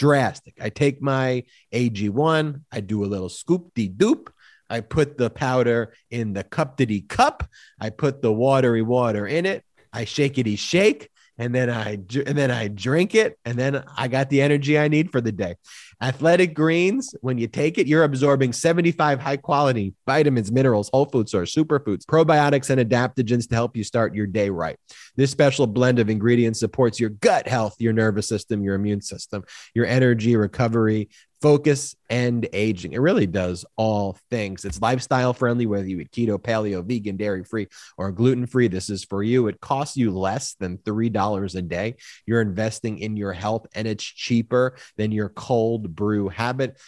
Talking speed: 180 wpm